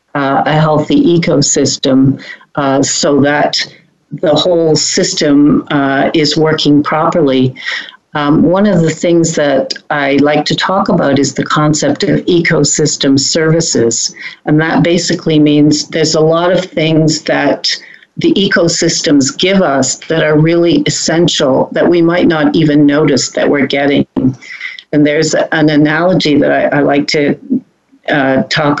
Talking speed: 140 wpm